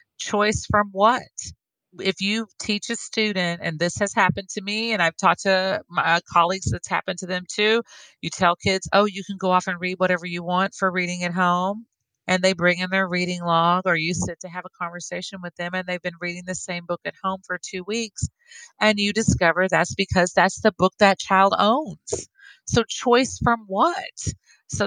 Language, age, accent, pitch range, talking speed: English, 40-59, American, 180-220 Hz, 210 wpm